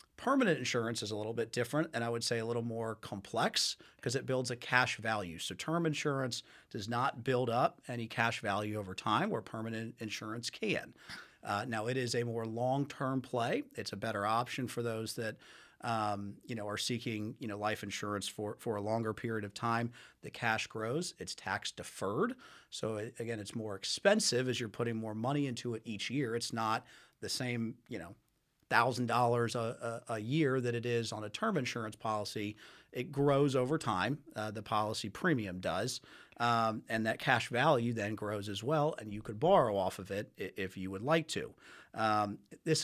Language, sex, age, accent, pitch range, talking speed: English, male, 40-59, American, 110-125 Hz, 195 wpm